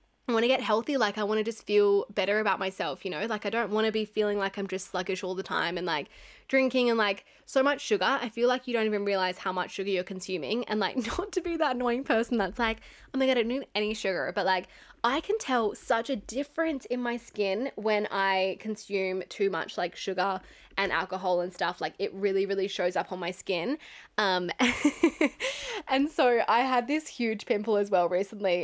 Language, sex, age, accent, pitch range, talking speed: English, female, 10-29, Australian, 195-255 Hz, 230 wpm